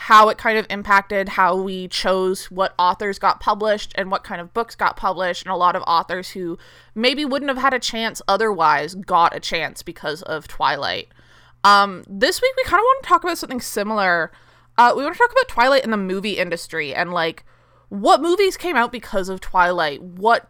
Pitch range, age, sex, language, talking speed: 180-270 Hz, 20-39, female, English, 210 wpm